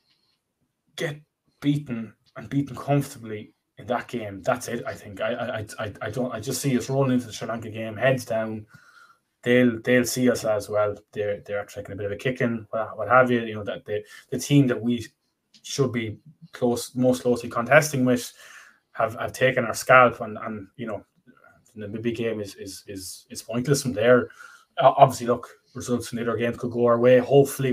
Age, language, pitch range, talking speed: 20-39, English, 115-135 Hz, 200 wpm